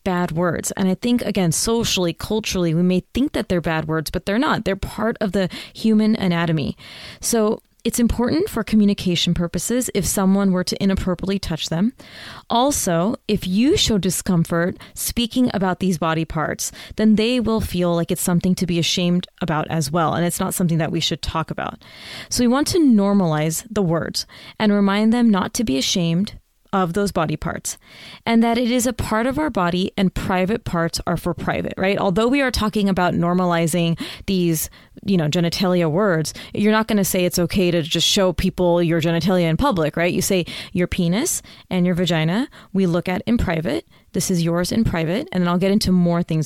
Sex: female